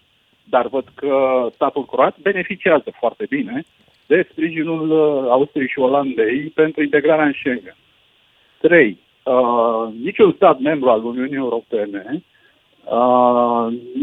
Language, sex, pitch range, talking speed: Romanian, male, 125-180 Hz, 110 wpm